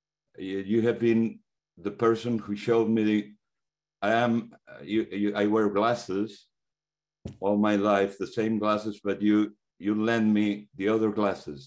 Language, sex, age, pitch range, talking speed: English, male, 50-69, 95-110 Hz, 160 wpm